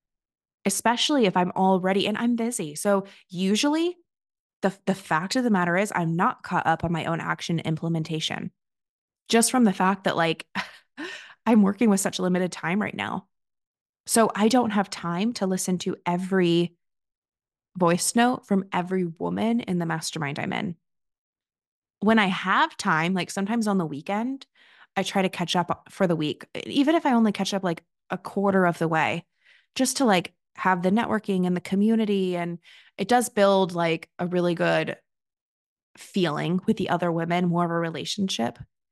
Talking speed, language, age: 175 wpm, English, 20-39